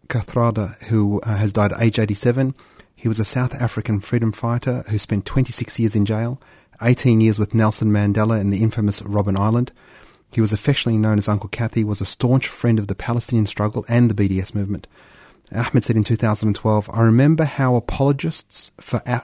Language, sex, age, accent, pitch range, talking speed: English, male, 30-49, Australian, 105-125 Hz, 180 wpm